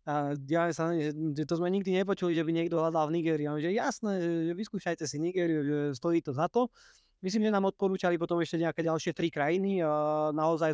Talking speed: 195 wpm